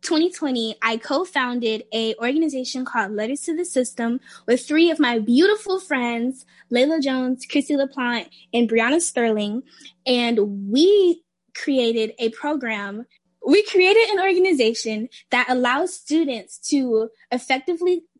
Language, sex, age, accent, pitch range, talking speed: English, female, 10-29, American, 230-300 Hz, 120 wpm